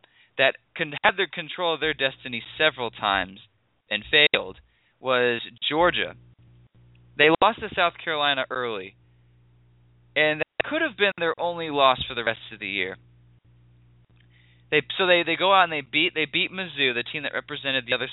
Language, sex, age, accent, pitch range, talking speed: English, male, 20-39, American, 120-170 Hz, 170 wpm